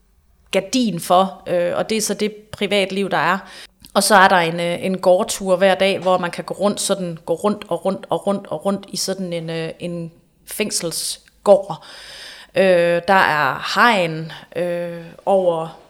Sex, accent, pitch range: female, native, 175-200 Hz